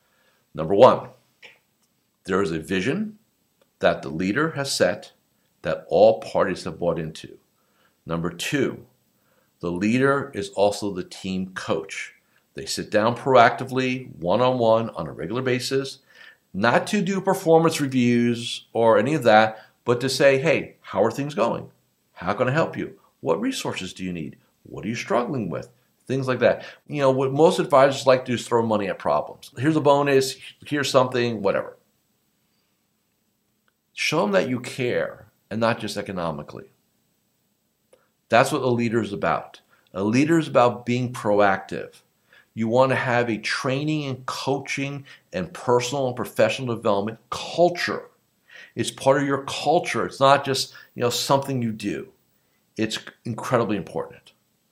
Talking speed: 155 wpm